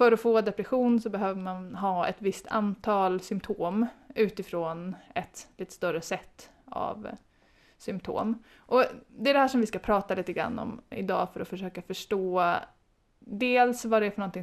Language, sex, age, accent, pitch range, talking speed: Swedish, female, 20-39, native, 190-235 Hz, 170 wpm